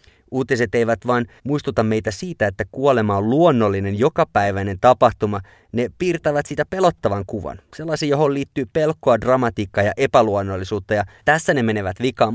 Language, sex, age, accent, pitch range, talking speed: Finnish, male, 30-49, native, 100-140 Hz, 140 wpm